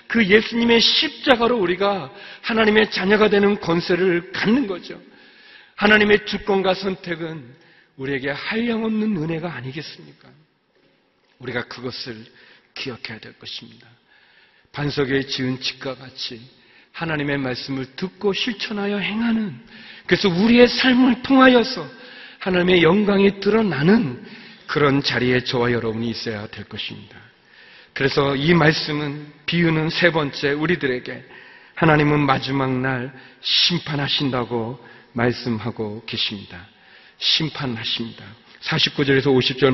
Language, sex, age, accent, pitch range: Korean, male, 40-59, native, 125-190 Hz